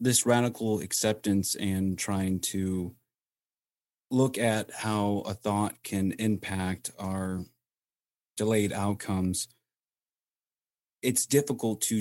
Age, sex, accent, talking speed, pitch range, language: 30-49, male, American, 95 wpm, 100-115 Hz, English